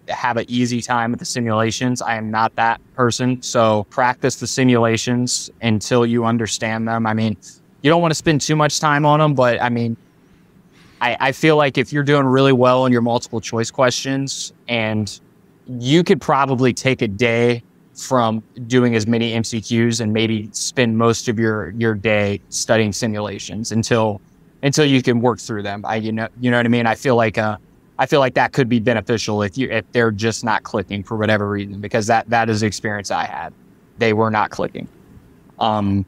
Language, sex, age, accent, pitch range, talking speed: English, male, 20-39, American, 110-125 Hz, 200 wpm